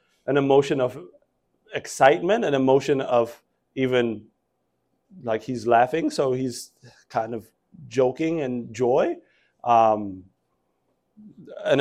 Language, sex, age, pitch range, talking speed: English, male, 30-49, 125-195 Hz, 100 wpm